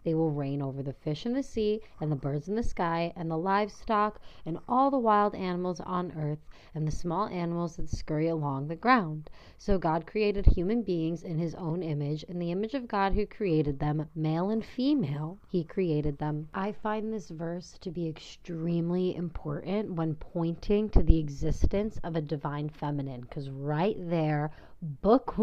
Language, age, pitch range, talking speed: English, 30-49, 155-195 Hz, 185 wpm